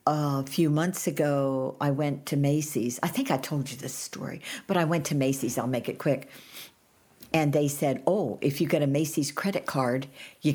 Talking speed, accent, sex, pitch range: 205 wpm, American, female, 130-165 Hz